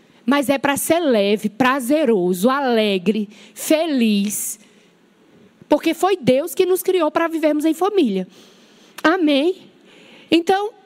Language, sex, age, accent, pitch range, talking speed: Portuguese, female, 20-39, Brazilian, 245-360 Hz, 110 wpm